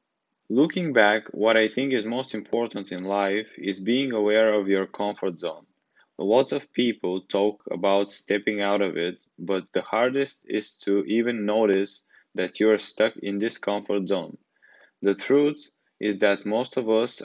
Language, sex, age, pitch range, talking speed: English, male, 20-39, 100-110 Hz, 170 wpm